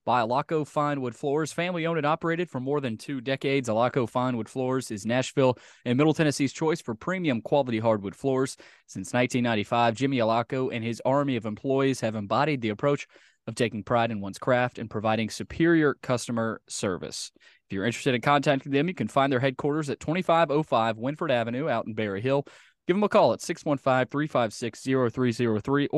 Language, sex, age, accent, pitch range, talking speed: English, male, 20-39, American, 110-140 Hz, 175 wpm